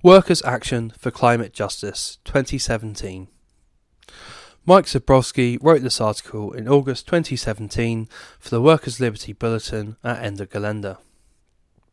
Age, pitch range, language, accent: 10-29, 105-130 Hz, English, British